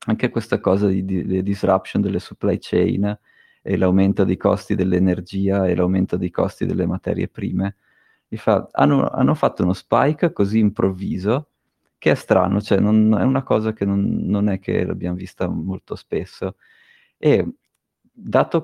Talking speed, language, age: 150 wpm, Italian, 30-49